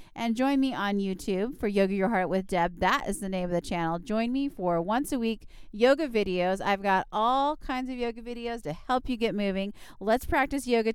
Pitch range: 180-250 Hz